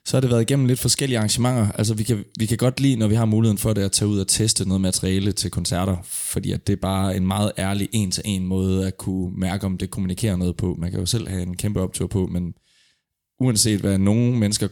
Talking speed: 250 wpm